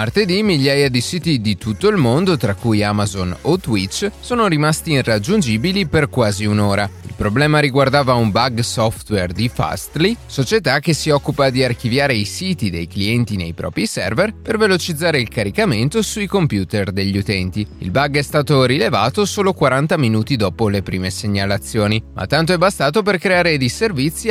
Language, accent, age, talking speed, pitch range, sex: Italian, native, 30-49, 165 wpm, 105-160 Hz, male